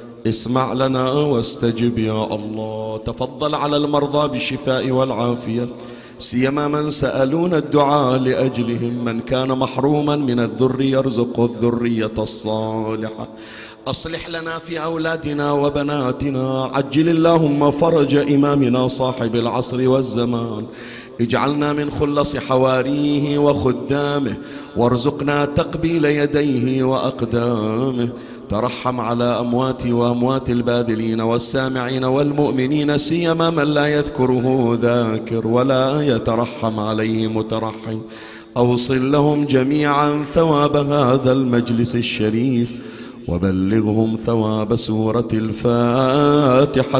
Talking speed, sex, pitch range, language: 90 wpm, male, 115-145 Hz, Arabic